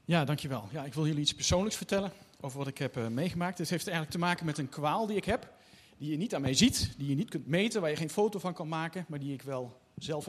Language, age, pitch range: Dutch, 40-59, 135-185 Hz